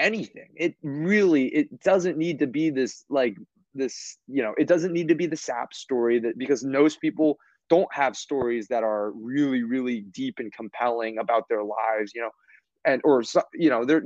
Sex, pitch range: male, 115-160 Hz